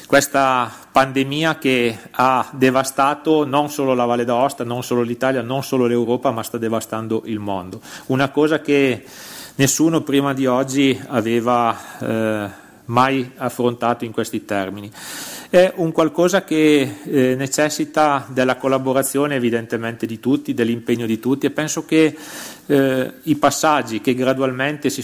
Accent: native